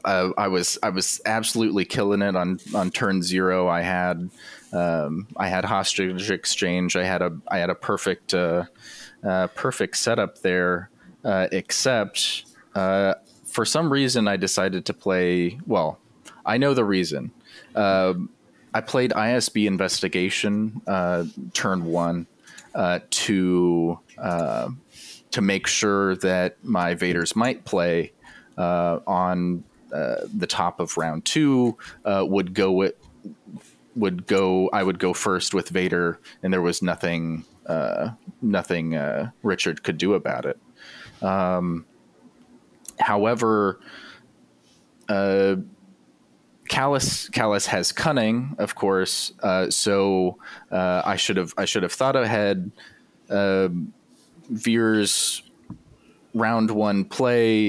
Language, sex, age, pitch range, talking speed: English, male, 30-49, 90-105 Hz, 125 wpm